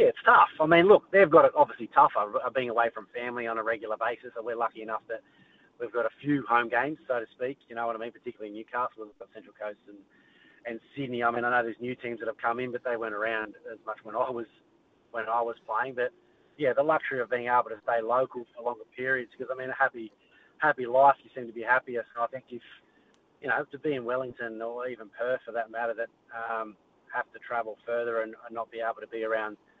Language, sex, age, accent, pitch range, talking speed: English, male, 30-49, Australian, 115-130 Hz, 250 wpm